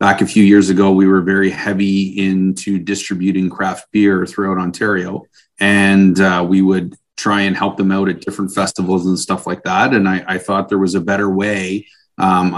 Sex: male